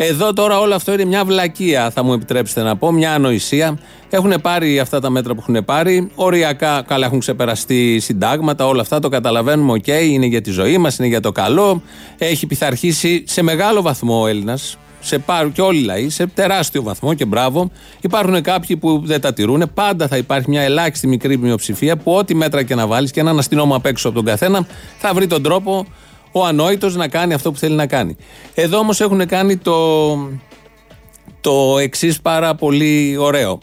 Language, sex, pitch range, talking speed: Greek, male, 130-185 Hz, 195 wpm